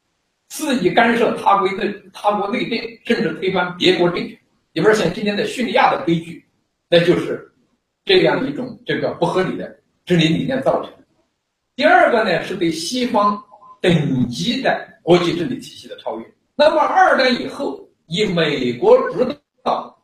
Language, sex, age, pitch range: Chinese, male, 50-69, 190-280 Hz